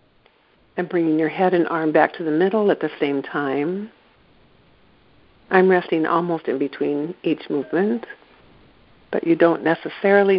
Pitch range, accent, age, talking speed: 155-190 Hz, American, 50-69, 145 wpm